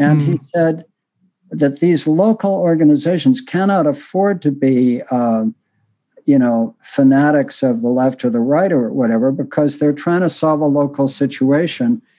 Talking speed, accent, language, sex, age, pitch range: 155 wpm, American, English, male, 60-79, 135-205 Hz